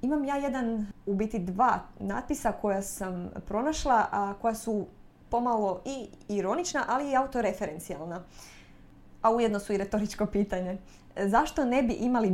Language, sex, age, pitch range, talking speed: Croatian, female, 20-39, 195-240 Hz, 140 wpm